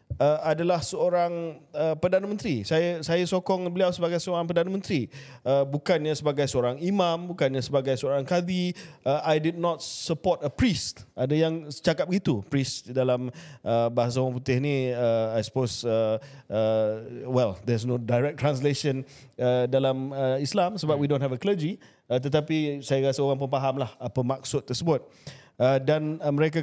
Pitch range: 125-155 Hz